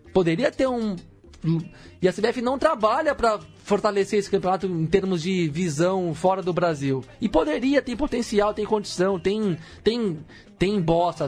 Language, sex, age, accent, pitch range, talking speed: Portuguese, male, 20-39, Brazilian, 155-215 Hz, 155 wpm